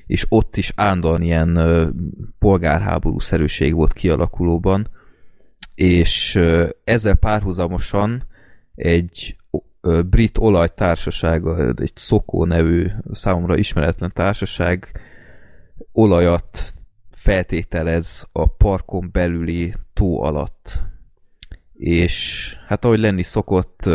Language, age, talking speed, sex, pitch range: Hungarian, 20-39, 80 wpm, male, 85-95 Hz